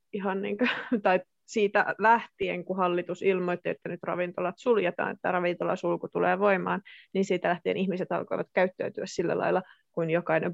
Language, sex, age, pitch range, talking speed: Finnish, female, 30-49, 185-230 Hz, 155 wpm